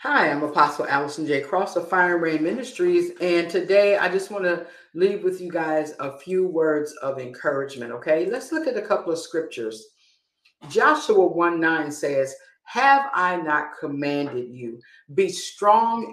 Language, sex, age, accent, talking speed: English, female, 50-69, American, 165 wpm